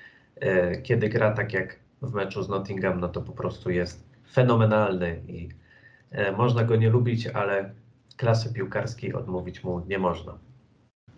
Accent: native